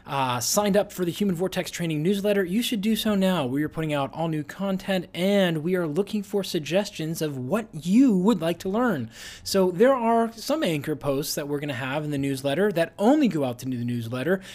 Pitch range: 155-220 Hz